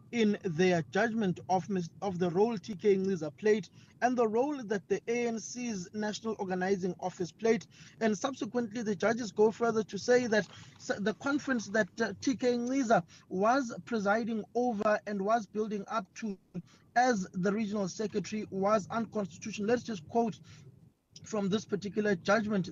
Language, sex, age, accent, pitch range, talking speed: English, male, 20-39, South African, 185-225 Hz, 155 wpm